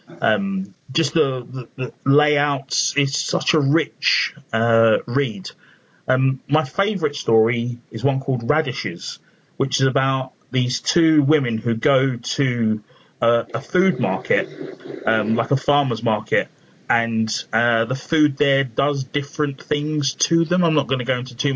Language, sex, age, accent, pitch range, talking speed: English, male, 30-49, British, 110-140 Hz, 155 wpm